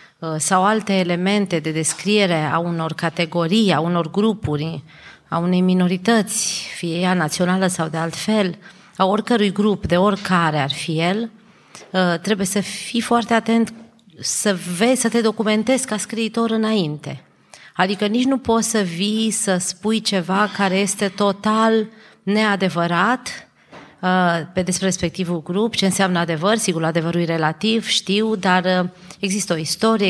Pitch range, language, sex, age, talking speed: 170-210 Hz, Romanian, female, 30-49, 140 wpm